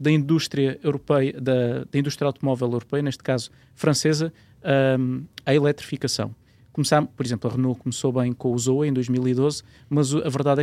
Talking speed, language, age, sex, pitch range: 160 wpm, Portuguese, 20-39, male, 120-145 Hz